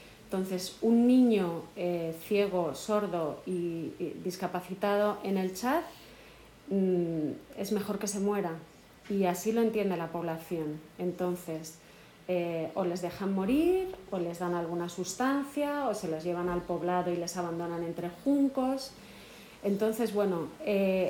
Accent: Spanish